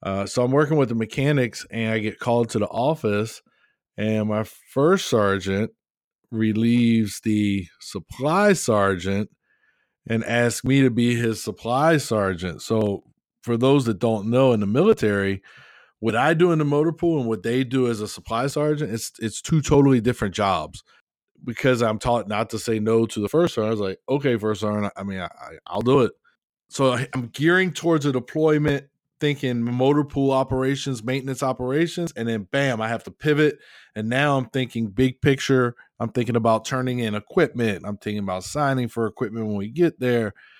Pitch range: 110-140 Hz